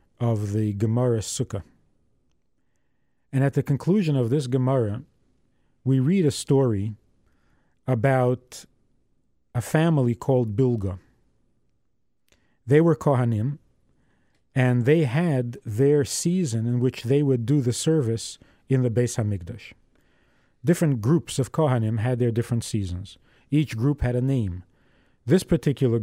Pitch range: 115-135 Hz